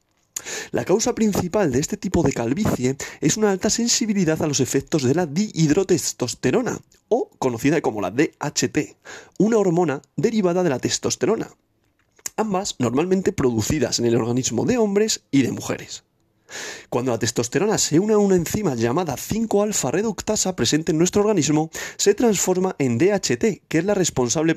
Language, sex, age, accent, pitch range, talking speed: Spanish, male, 30-49, Spanish, 130-205 Hz, 150 wpm